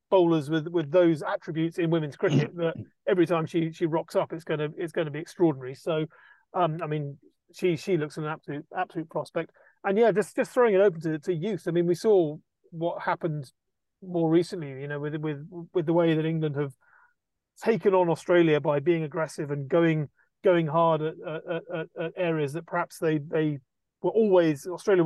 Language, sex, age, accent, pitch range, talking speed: English, male, 40-59, British, 155-180 Hz, 195 wpm